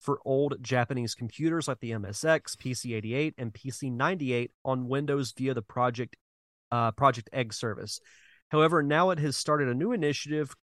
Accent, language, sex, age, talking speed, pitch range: American, English, male, 30-49, 150 wpm, 120-145 Hz